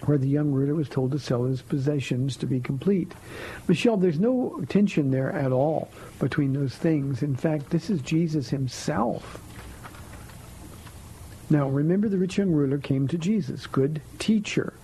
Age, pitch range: 50-69, 135-175 Hz